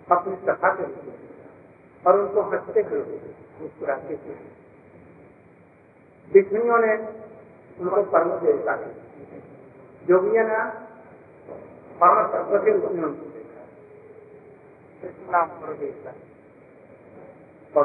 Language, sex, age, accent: Hindi, male, 50-69, native